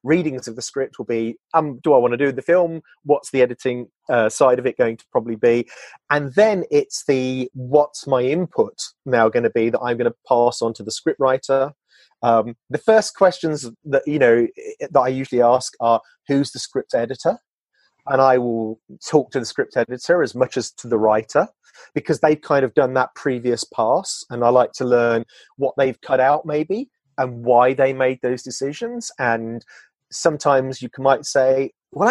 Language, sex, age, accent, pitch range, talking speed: English, male, 30-49, British, 125-155 Hz, 200 wpm